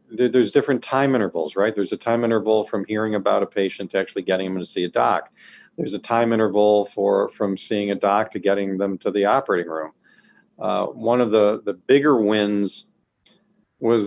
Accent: American